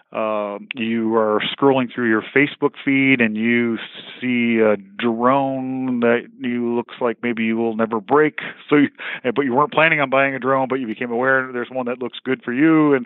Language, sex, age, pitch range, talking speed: English, male, 40-59, 115-130 Hz, 200 wpm